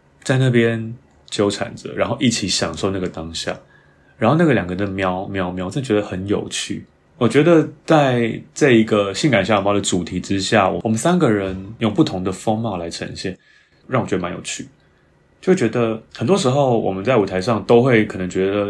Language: Chinese